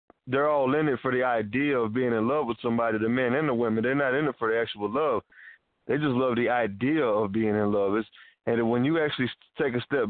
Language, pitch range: English, 115-140 Hz